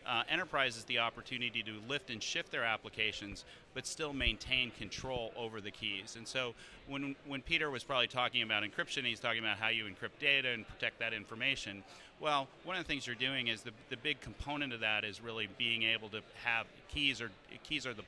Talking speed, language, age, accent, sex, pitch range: 210 wpm, English, 30-49, American, male, 110-130 Hz